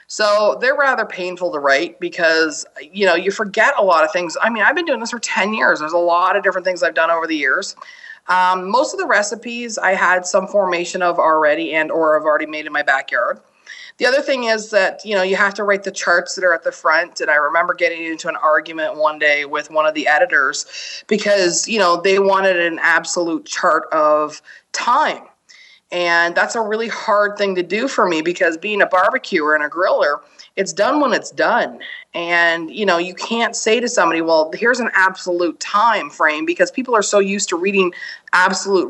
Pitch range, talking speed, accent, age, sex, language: 170-230 Hz, 215 wpm, American, 30-49, female, English